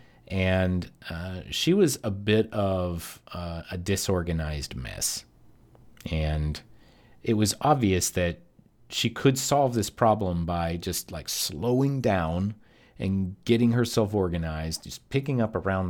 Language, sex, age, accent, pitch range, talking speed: English, male, 40-59, American, 90-120 Hz, 130 wpm